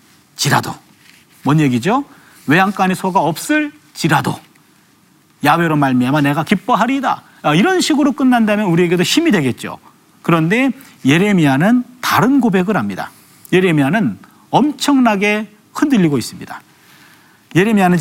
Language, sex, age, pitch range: Korean, male, 40-59, 155-245 Hz